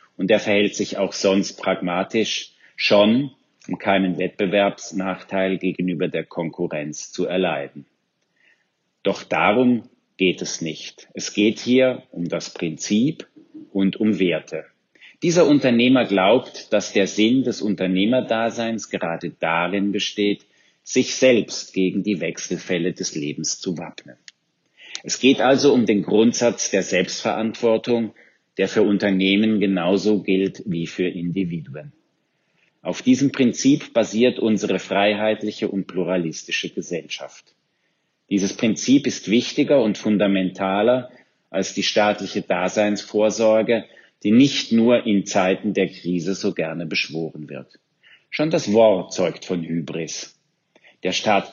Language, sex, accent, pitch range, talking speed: German, male, German, 90-110 Hz, 120 wpm